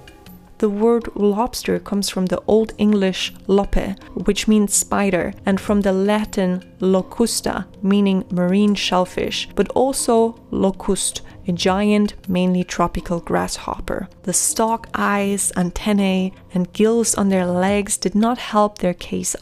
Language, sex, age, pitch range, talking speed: English, female, 30-49, 185-230 Hz, 130 wpm